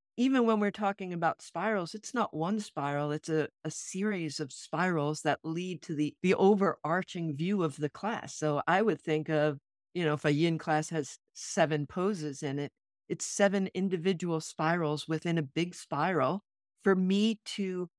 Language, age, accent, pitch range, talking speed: English, 50-69, American, 155-195 Hz, 175 wpm